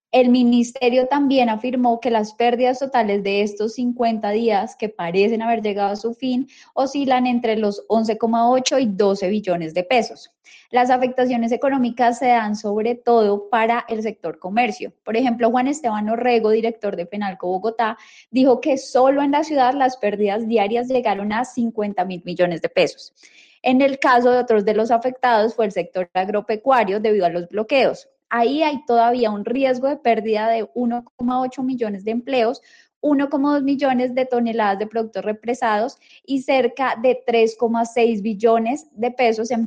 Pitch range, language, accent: 215-255 Hz, Spanish, Colombian